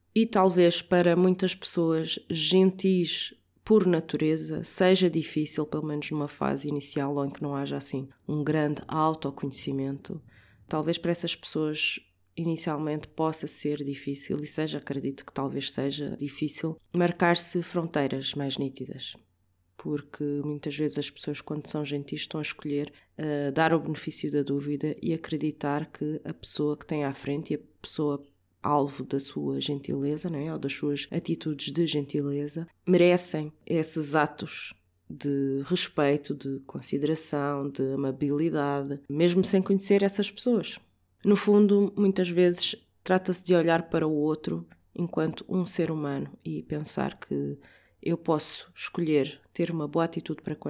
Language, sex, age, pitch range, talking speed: Portuguese, female, 20-39, 145-170 Hz, 145 wpm